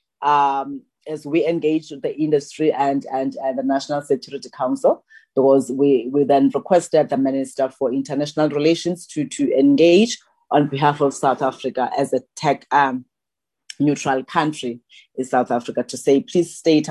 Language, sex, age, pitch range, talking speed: English, female, 30-49, 130-150 Hz, 155 wpm